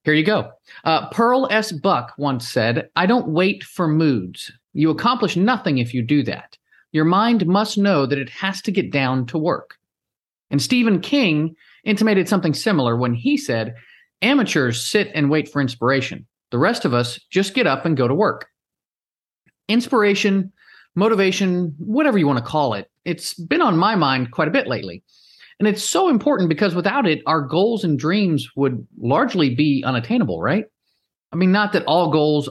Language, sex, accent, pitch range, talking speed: English, male, American, 130-195 Hz, 180 wpm